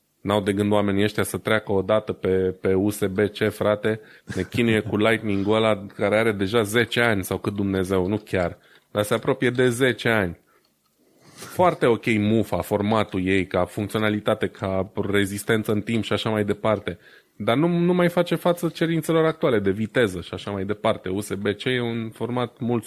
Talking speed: 180 wpm